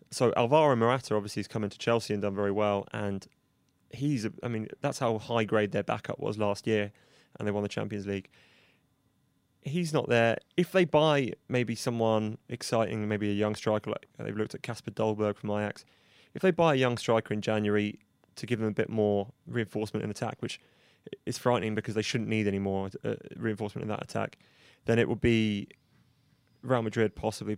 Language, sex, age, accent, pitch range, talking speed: English, male, 20-39, British, 105-120 Hz, 200 wpm